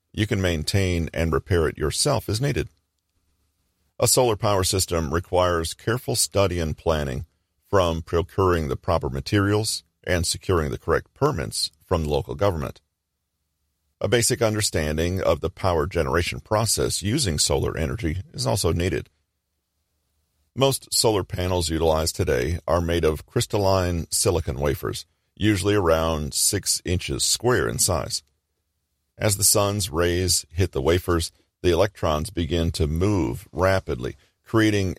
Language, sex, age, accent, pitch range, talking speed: English, male, 40-59, American, 80-95 Hz, 135 wpm